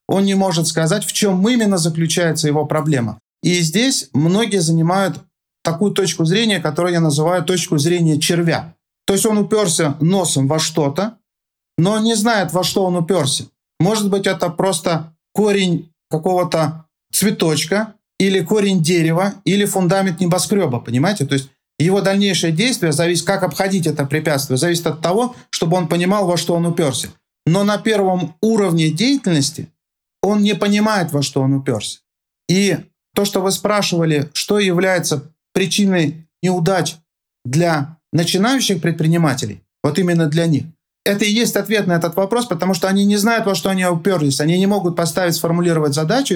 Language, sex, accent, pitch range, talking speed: Russian, male, native, 160-195 Hz, 155 wpm